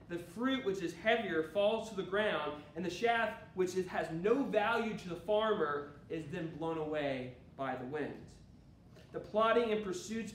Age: 30-49